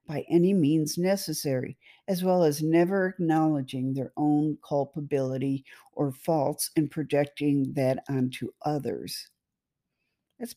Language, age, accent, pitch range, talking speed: English, 50-69, American, 160-235 Hz, 115 wpm